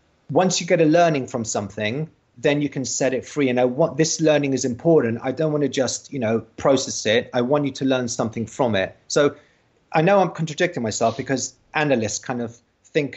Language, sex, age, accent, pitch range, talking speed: English, male, 30-49, British, 115-140 Hz, 220 wpm